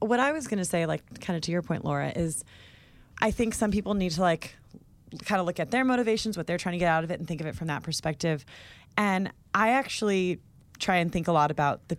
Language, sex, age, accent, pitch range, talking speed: English, female, 30-49, American, 150-185 Hz, 260 wpm